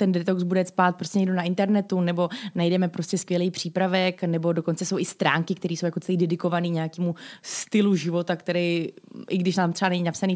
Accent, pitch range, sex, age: native, 175-205 Hz, female, 20-39